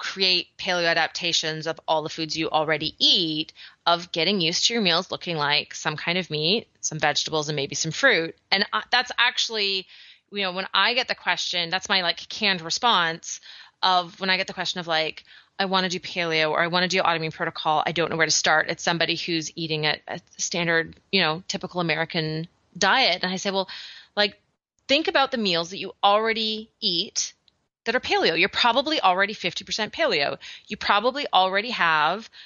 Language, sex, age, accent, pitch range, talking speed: English, female, 30-49, American, 165-205 Hz, 195 wpm